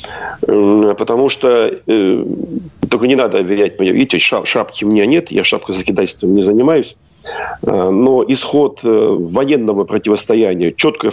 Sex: male